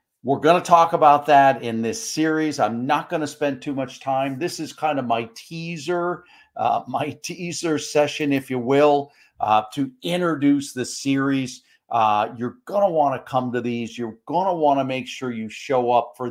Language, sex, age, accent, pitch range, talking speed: English, male, 50-69, American, 120-155 Hz, 200 wpm